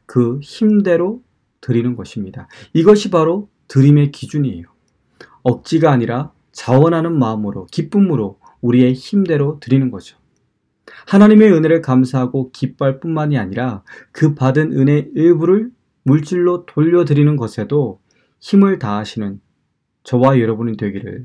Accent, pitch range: native, 115-160 Hz